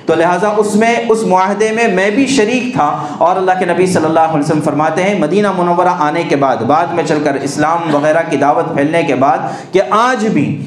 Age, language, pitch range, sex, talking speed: 50-69, Urdu, 165-210 Hz, male, 225 wpm